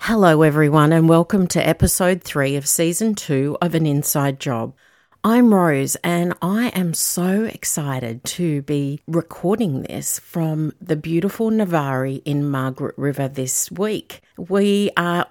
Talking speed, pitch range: 140 wpm, 145-185 Hz